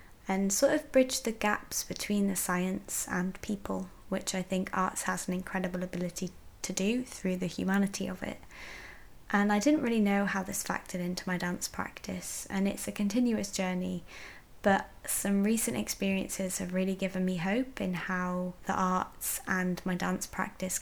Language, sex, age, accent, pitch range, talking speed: English, female, 20-39, British, 185-200 Hz, 175 wpm